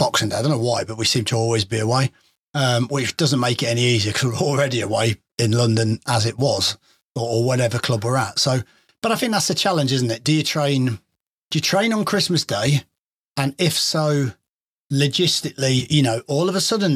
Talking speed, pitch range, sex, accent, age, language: 225 wpm, 120-150 Hz, male, British, 30-49, English